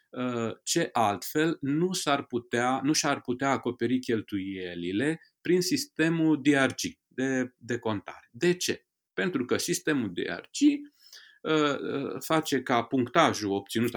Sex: male